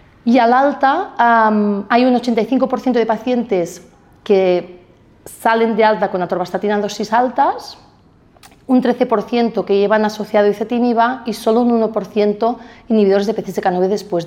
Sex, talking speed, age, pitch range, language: female, 135 wpm, 30-49, 195-235 Hz, English